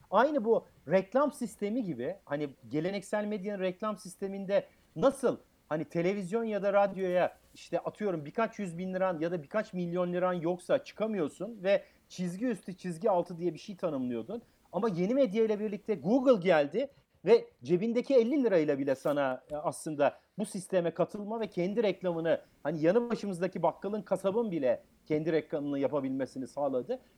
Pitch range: 180-235 Hz